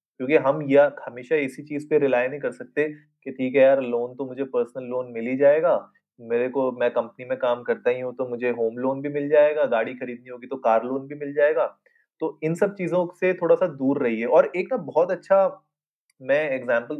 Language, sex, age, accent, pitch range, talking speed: Hindi, male, 30-49, native, 125-170 Hz, 225 wpm